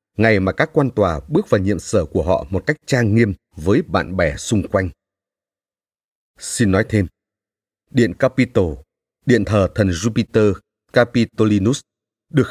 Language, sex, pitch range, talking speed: Vietnamese, male, 95-125 Hz, 150 wpm